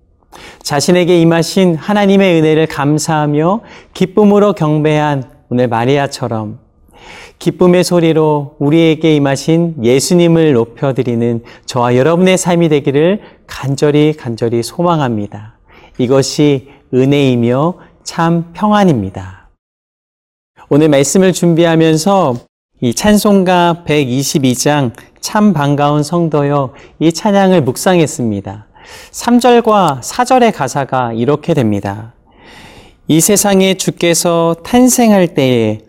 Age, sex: 40-59, male